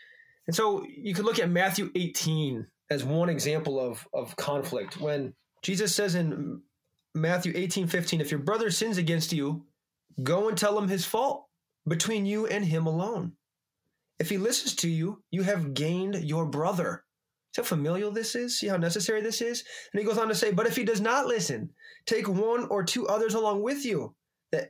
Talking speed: 190 wpm